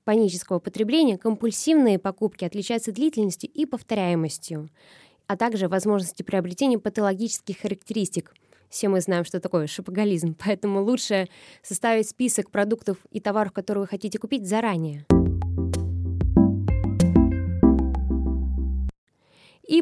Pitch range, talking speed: 190-260 Hz, 100 wpm